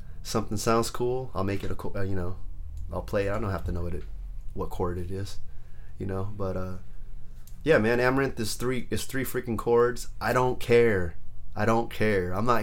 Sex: male